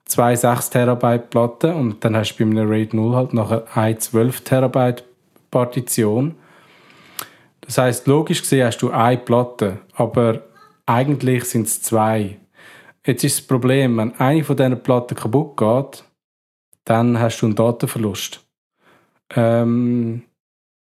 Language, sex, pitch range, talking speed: German, male, 115-140 Hz, 140 wpm